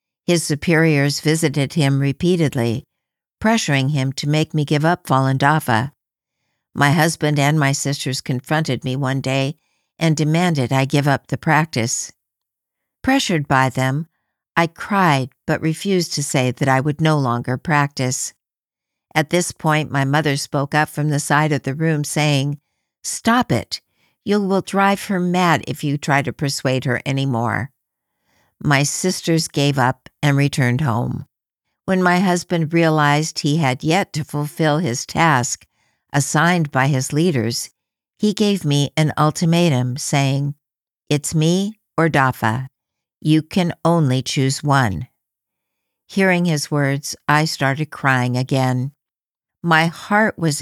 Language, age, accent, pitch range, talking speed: English, 60-79, American, 135-160 Hz, 140 wpm